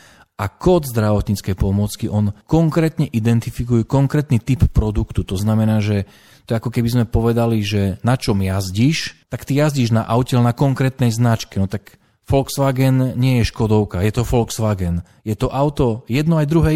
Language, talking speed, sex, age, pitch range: Slovak, 165 wpm, male, 40-59, 100-130 Hz